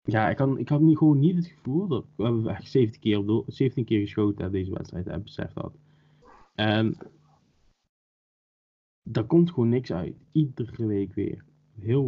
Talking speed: 185 wpm